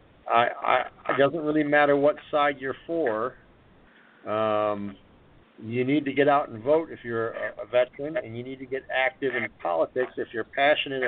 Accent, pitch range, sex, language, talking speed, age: American, 110-135 Hz, male, English, 175 wpm, 50-69